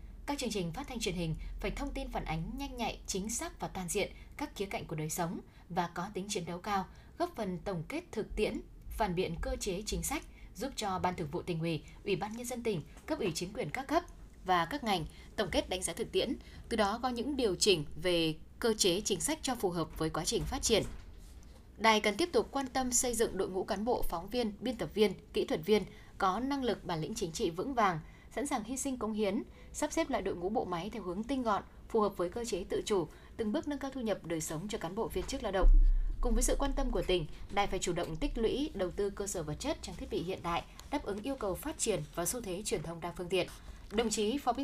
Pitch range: 180-245 Hz